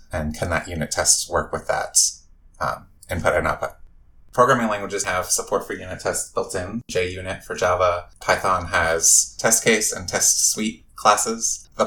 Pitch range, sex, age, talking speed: 80-115 Hz, male, 20-39, 165 wpm